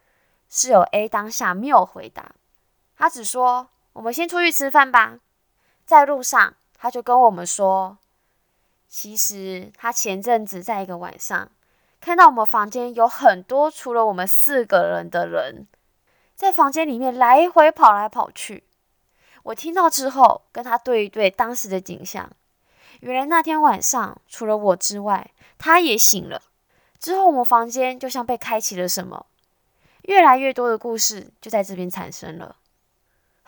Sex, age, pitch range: female, 20-39, 200-270 Hz